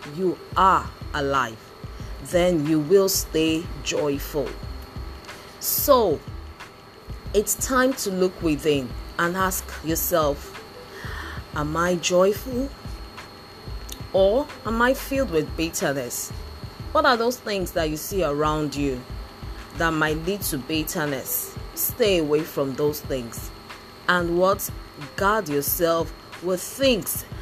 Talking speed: 110 wpm